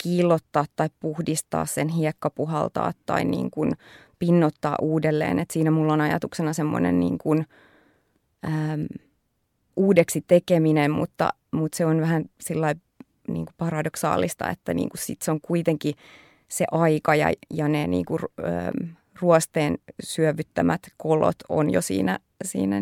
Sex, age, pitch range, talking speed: female, 20-39, 150-165 Hz, 130 wpm